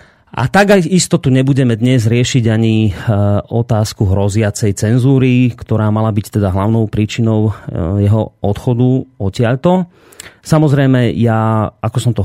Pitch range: 105-125 Hz